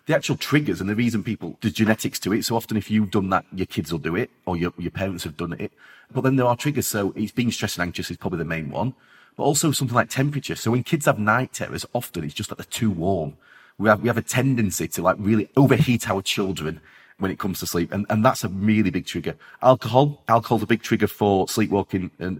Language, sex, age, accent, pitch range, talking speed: English, male, 30-49, British, 95-125 Hz, 255 wpm